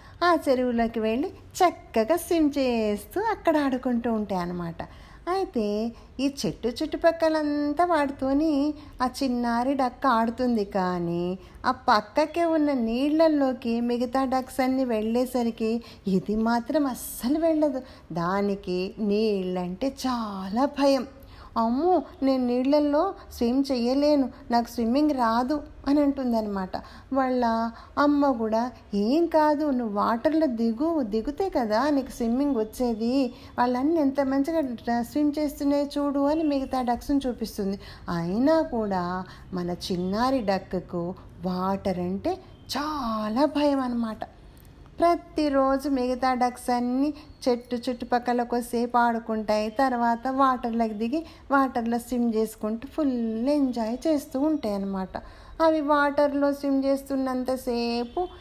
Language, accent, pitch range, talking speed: Telugu, native, 225-290 Hz, 105 wpm